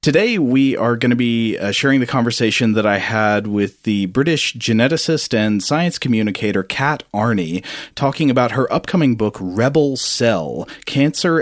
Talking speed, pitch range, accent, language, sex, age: 160 wpm, 100-130 Hz, American, English, male, 40-59